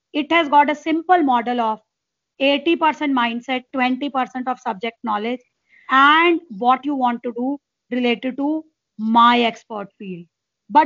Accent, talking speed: Indian, 140 wpm